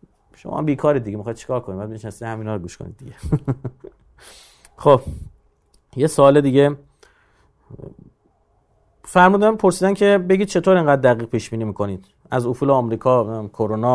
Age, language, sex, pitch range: 30-49, Persian, male, 110-160 Hz